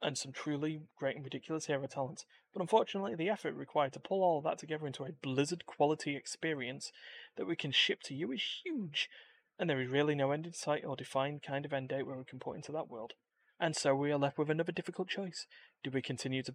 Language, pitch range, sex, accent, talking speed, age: English, 135-165 Hz, male, British, 235 wpm, 20-39